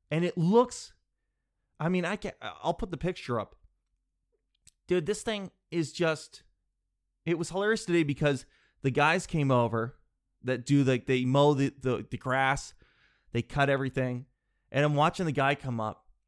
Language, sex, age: English, male, 20-39